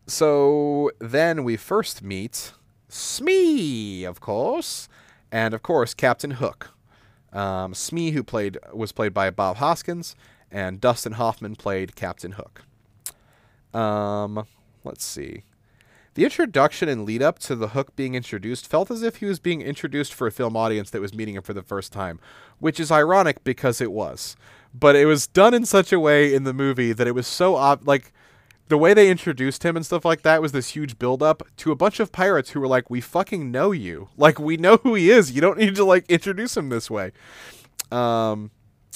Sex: male